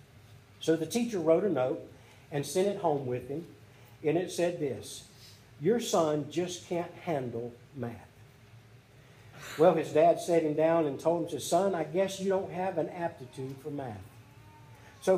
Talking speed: 165 wpm